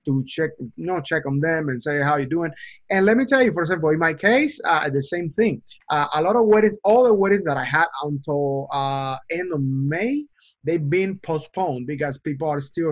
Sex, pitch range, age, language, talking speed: male, 145-185 Hz, 30-49, English, 235 wpm